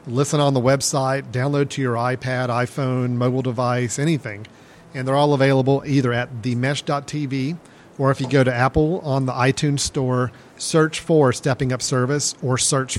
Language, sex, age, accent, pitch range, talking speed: English, male, 40-59, American, 125-145 Hz, 165 wpm